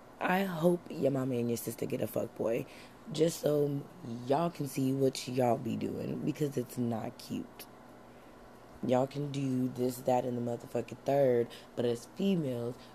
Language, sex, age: English, female, 20-39